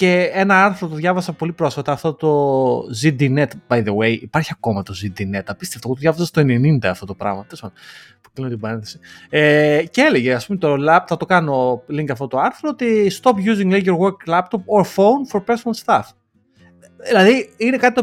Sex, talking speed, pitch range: male, 195 wpm, 135-190 Hz